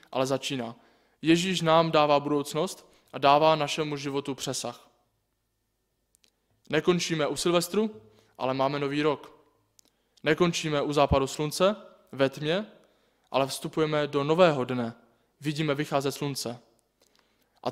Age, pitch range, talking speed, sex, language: 20-39, 130-155 Hz, 110 wpm, male, Czech